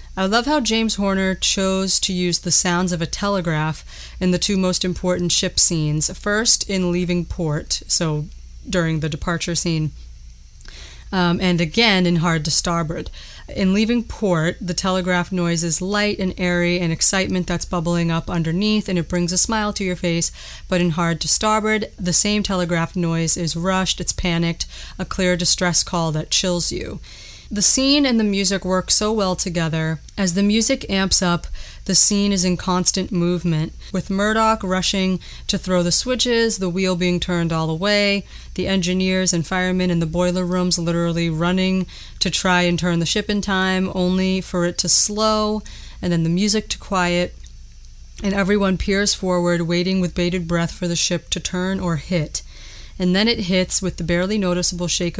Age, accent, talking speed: 30-49, American, 180 wpm